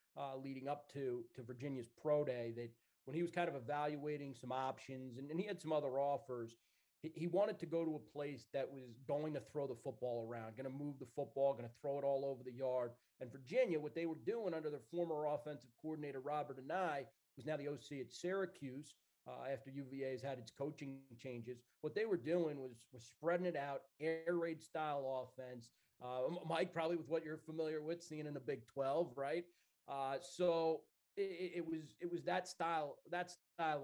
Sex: male